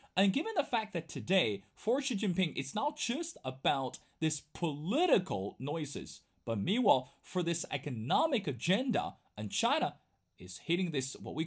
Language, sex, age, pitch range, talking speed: English, male, 30-49, 145-215 Hz, 150 wpm